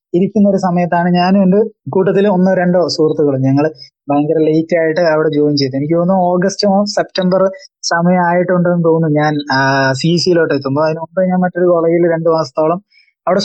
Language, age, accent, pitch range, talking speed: Malayalam, 20-39, native, 160-200 Hz, 145 wpm